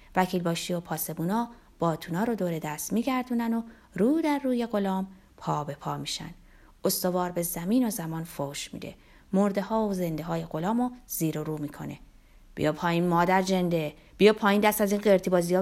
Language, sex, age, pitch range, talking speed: Persian, female, 30-49, 165-225 Hz, 175 wpm